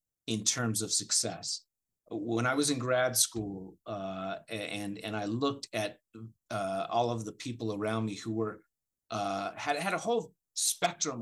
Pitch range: 115-155 Hz